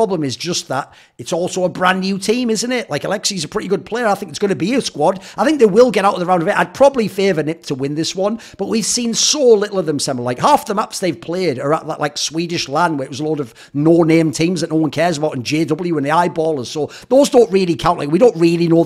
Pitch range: 145-195 Hz